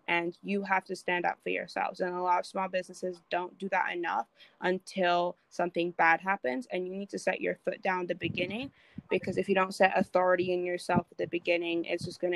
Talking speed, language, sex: 225 wpm, English, female